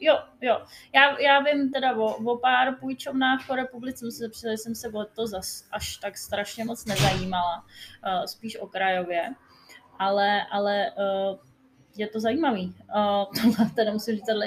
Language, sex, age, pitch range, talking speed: Czech, female, 20-39, 205-255 Hz, 165 wpm